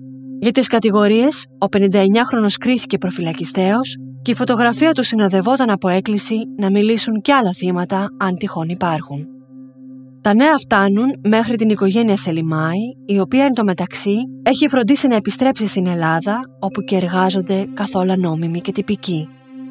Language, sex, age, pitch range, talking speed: Greek, female, 20-39, 170-235 Hz, 140 wpm